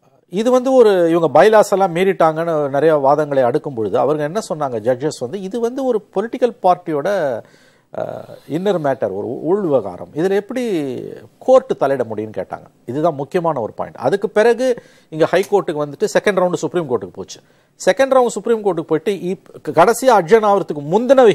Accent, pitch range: native, 150-210 Hz